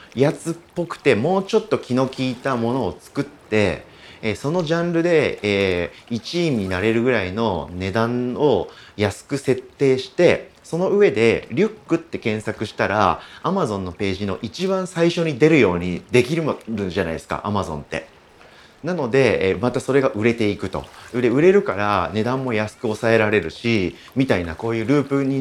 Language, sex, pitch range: Japanese, male, 100-145 Hz